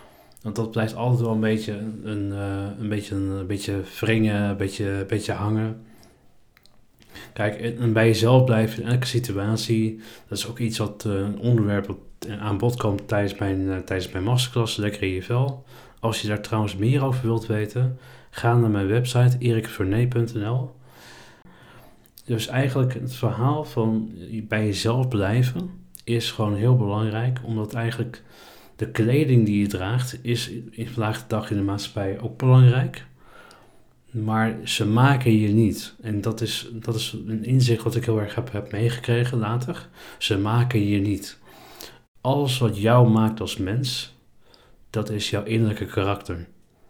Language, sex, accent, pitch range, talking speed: Dutch, male, Dutch, 105-120 Hz, 155 wpm